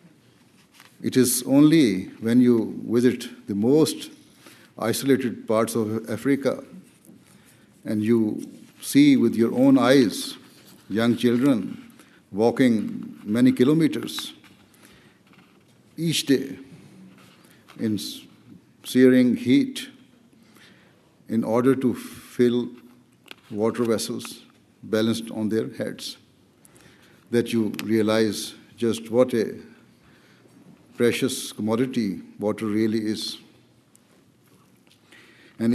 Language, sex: English, male